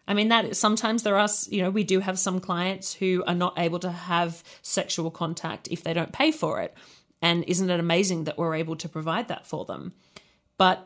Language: English